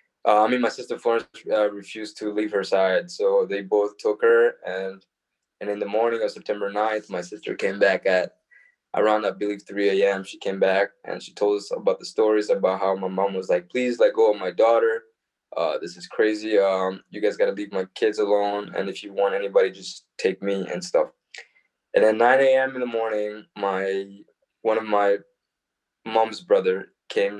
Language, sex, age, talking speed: English, male, 20-39, 205 wpm